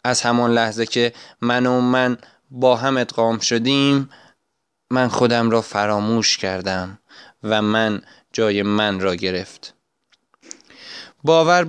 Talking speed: 120 wpm